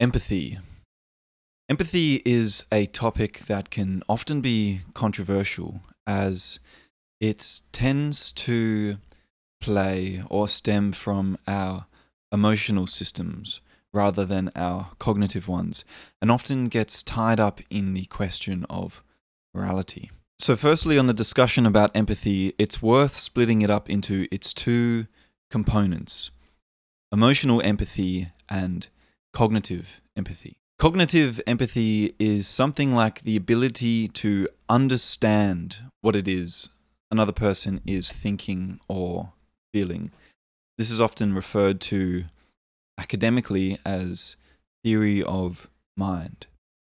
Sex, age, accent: male, 20-39, Australian